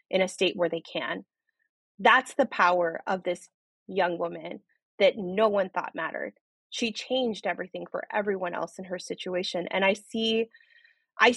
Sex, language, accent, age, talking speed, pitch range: female, English, American, 20-39, 165 wpm, 185-235 Hz